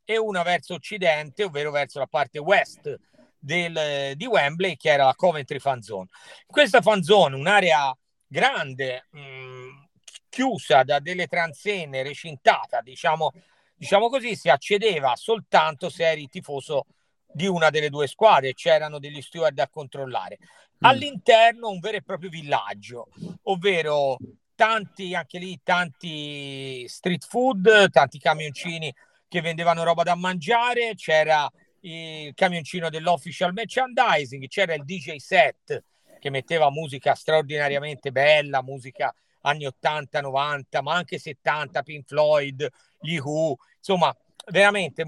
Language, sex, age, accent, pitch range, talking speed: Italian, male, 50-69, native, 140-185 Hz, 125 wpm